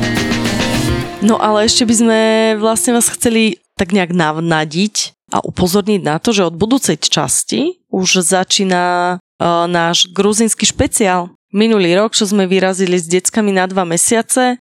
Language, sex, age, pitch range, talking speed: Slovak, female, 20-39, 165-205 Hz, 145 wpm